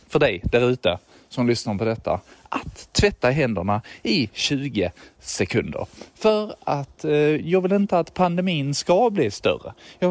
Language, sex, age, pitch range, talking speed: Swedish, male, 20-39, 110-170 Hz, 155 wpm